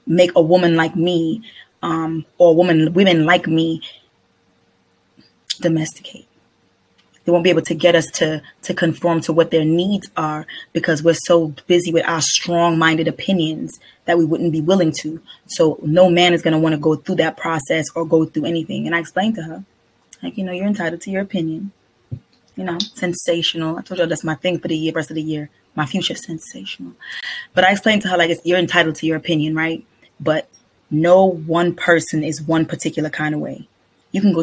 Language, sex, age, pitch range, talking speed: English, female, 20-39, 160-175 Hz, 200 wpm